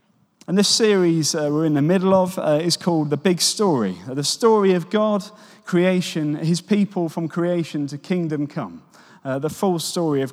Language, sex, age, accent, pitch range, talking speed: English, male, 30-49, British, 145-185 Hz, 185 wpm